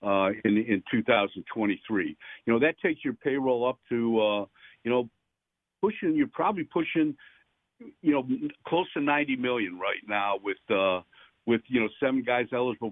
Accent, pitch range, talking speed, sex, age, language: American, 115-170 Hz, 165 wpm, male, 50-69, English